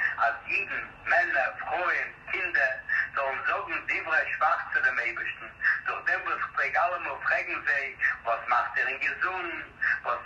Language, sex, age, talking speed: Hebrew, male, 60-79, 150 wpm